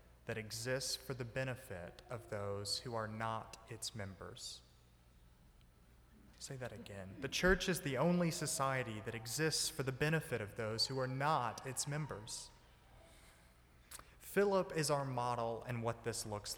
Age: 30-49